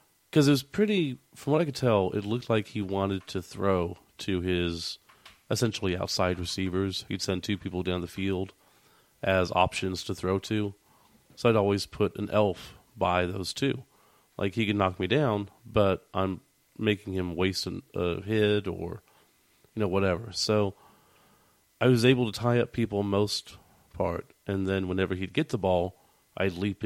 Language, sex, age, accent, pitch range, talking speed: English, male, 30-49, American, 95-115 Hz, 175 wpm